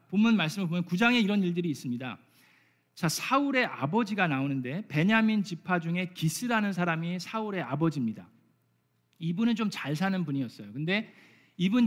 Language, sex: Korean, male